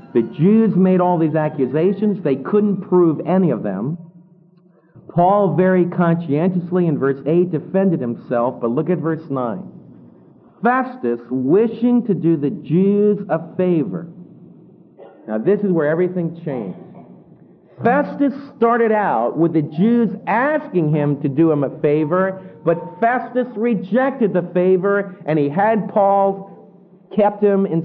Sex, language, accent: male, English, American